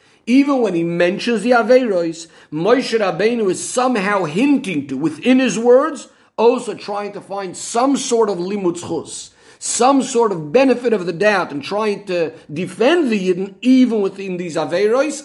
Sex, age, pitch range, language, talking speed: male, 50-69, 175-240 Hz, English, 155 wpm